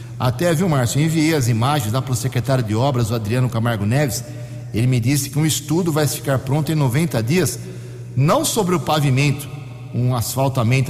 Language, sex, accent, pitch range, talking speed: Portuguese, male, Brazilian, 120-155 Hz, 195 wpm